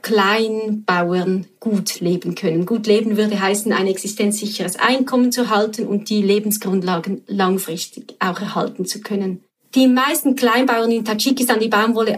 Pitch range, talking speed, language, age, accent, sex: 195-240 Hz, 140 wpm, German, 30-49, Swiss, female